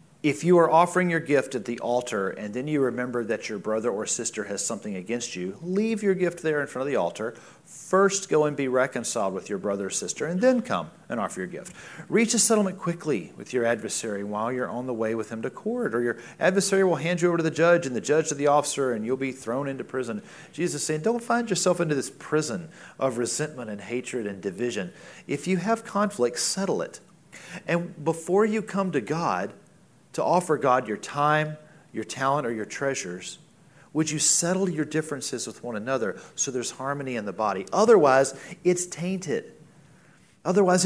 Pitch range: 125-180 Hz